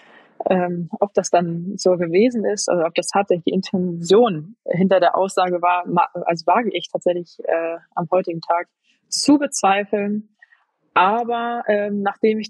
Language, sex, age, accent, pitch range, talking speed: German, female, 20-39, German, 170-200 Hz, 150 wpm